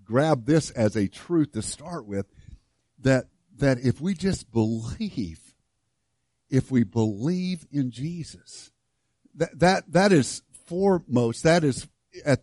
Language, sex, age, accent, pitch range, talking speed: English, male, 50-69, American, 135-190 Hz, 130 wpm